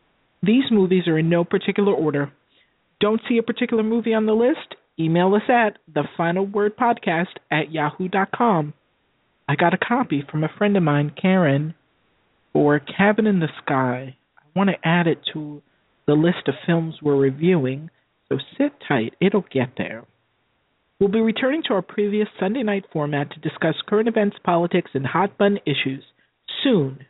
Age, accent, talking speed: 40-59, American, 160 wpm